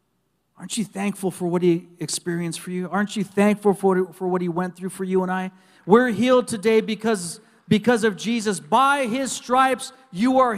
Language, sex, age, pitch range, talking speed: English, male, 40-59, 160-225 Hz, 195 wpm